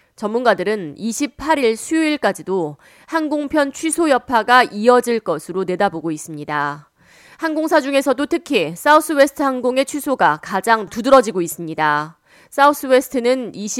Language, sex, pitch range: Korean, female, 185-265 Hz